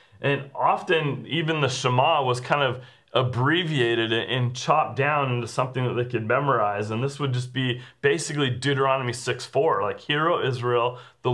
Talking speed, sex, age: 165 wpm, male, 30-49